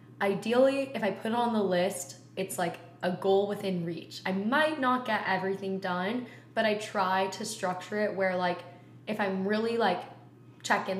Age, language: 10-29, English